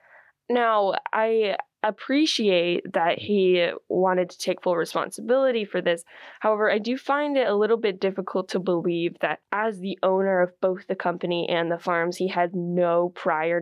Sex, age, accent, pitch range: female, 10-29, American, 175-215 Hz